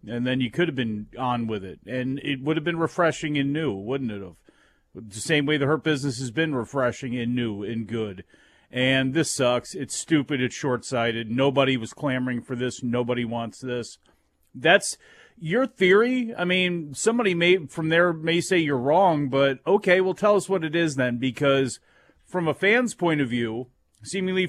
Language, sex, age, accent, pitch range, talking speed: English, male, 40-59, American, 125-160 Hz, 190 wpm